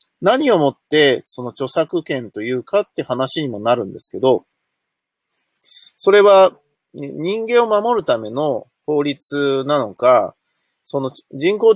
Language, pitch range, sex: Japanese, 130-195 Hz, male